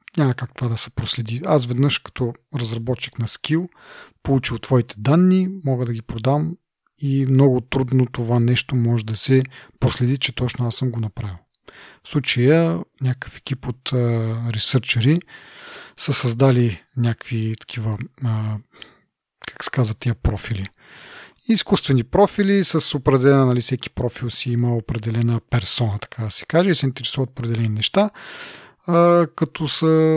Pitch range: 115-140 Hz